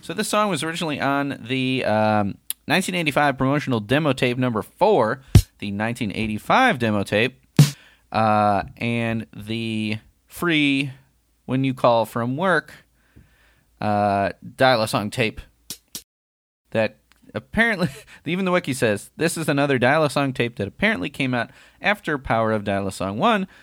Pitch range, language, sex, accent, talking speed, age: 100-140 Hz, English, male, American, 125 wpm, 30-49